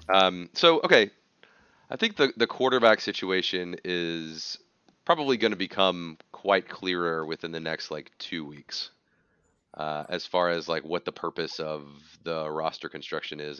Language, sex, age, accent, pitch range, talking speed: English, male, 30-49, American, 80-95 Hz, 155 wpm